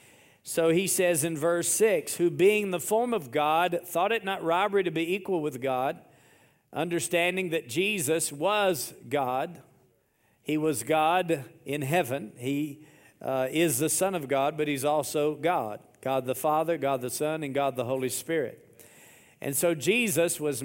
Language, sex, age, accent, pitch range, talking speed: English, male, 50-69, American, 145-180 Hz, 165 wpm